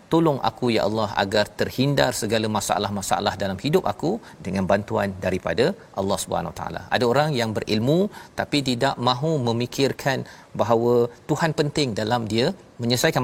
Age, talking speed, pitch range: 40-59, 145 wpm, 110-135 Hz